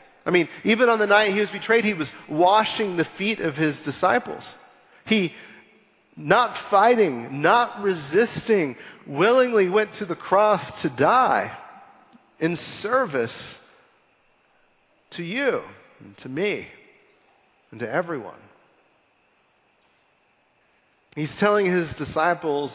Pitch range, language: 150-210 Hz, English